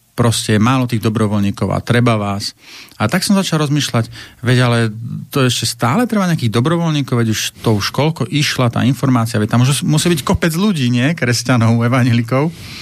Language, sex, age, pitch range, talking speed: Slovak, male, 40-59, 105-130 Hz, 170 wpm